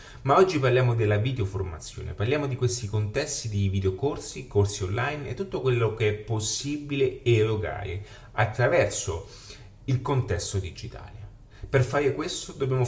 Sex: male